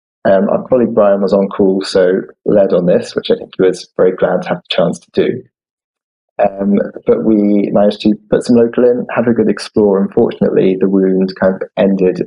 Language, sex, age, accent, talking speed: English, male, 20-39, British, 210 wpm